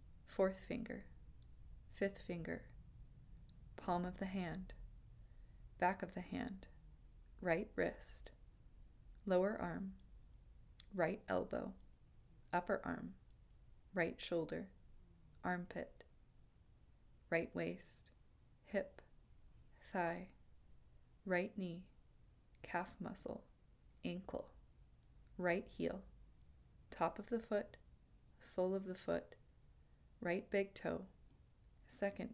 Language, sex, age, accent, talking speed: English, female, 20-39, American, 85 wpm